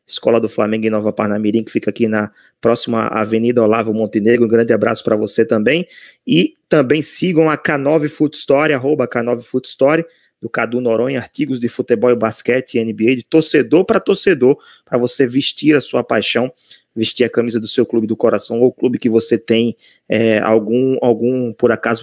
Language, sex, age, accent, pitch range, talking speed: Portuguese, male, 20-39, Brazilian, 115-130 Hz, 190 wpm